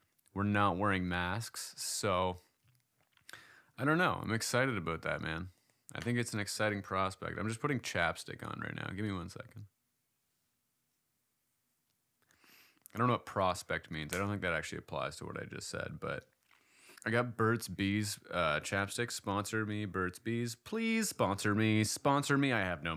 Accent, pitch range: American, 95-125 Hz